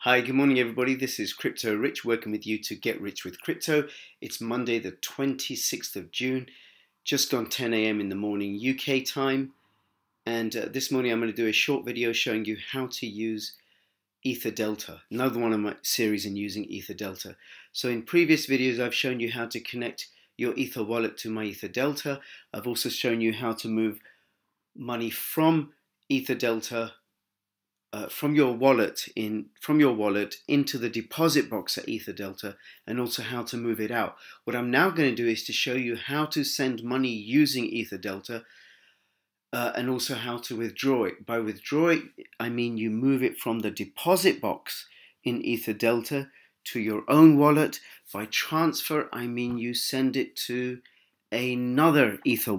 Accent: British